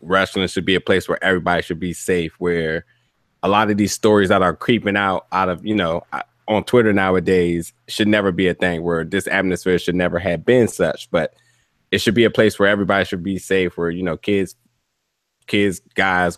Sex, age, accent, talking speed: male, 20-39, American, 210 wpm